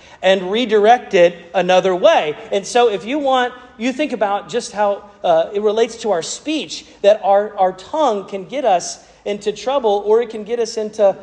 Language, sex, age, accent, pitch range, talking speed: English, male, 40-59, American, 170-230 Hz, 190 wpm